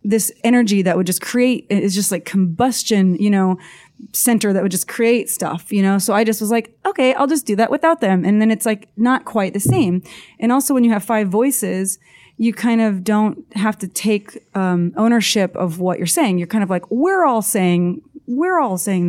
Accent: American